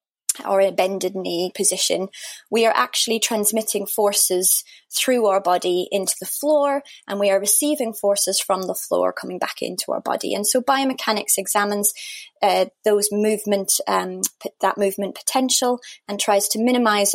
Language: English